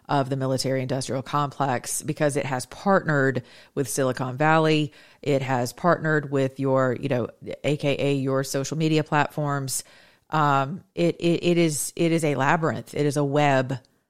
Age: 40-59